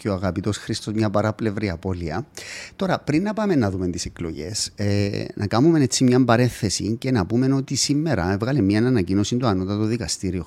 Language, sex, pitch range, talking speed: English, male, 95-145 Hz, 170 wpm